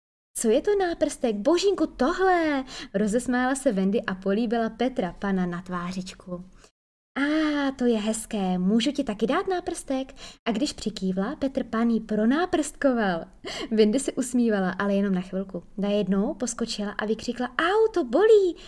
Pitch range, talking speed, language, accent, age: 195-270 Hz, 140 wpm, Czech, native, 20-39